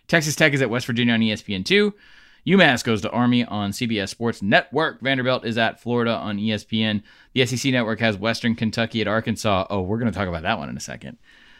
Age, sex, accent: 20-39, male, American